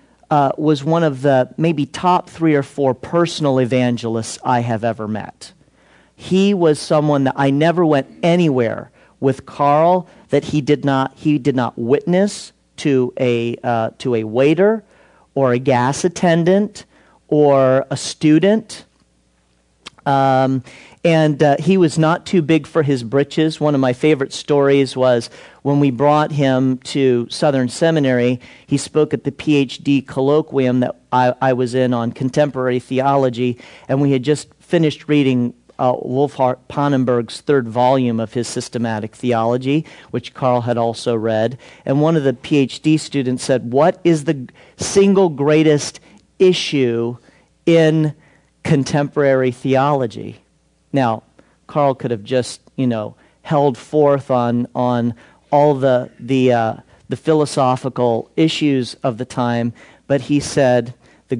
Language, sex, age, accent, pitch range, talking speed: English, male, 40-59, American, 125-150 Hz, 145 wpm